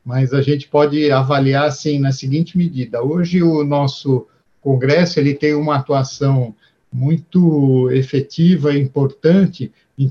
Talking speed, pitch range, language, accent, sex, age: 130 wpm, 135-155 Hz, Portuguese, Brazilian, male, 50-69